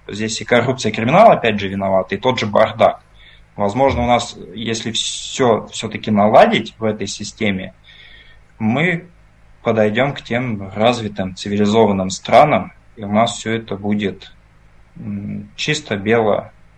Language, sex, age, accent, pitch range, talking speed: Russian, male, 20-39, native, 105-120 Hz, 130 wpm